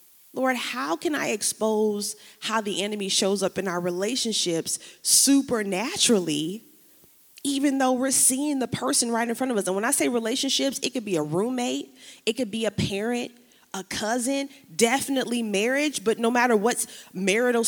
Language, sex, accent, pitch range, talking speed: English, female, American, 190-250 Hz, 165 wpm